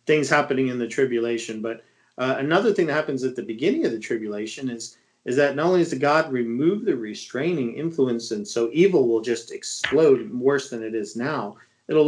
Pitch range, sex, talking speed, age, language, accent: 115-140 Hz, male, 205 wpm, 40-59, English, American